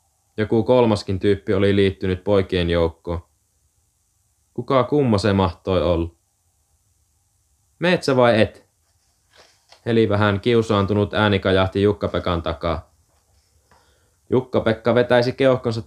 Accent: native